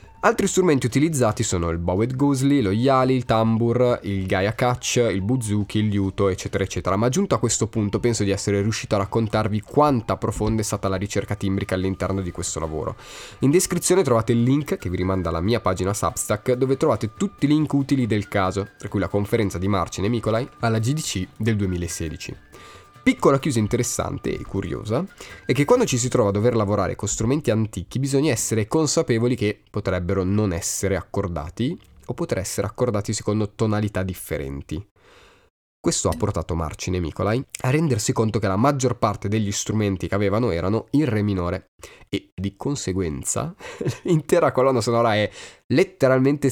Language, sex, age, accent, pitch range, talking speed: Italian, male, 20-39, native, 95-125 Hz, 175 wpm